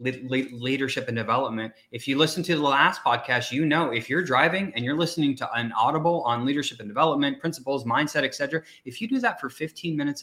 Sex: male